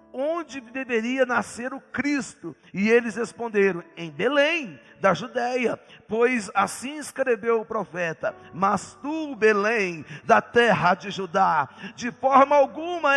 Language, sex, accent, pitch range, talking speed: Portuguese, male, Brazilian, 190-255 Hz, 125 wpm